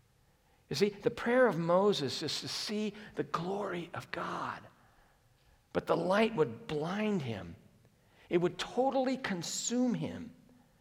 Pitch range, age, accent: 120-190 Hz, 50-69, American